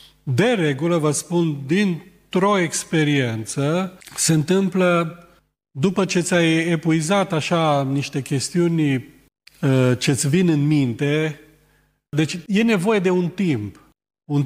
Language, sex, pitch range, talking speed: Romanian, male, 125-160 Hz, 110 wpm